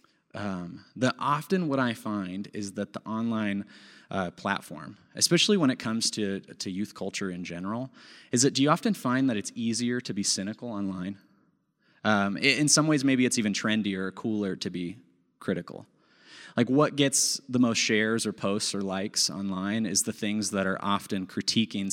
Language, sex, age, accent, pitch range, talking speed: English, male, 20-39, American, 100-130 Hz, 180 wpm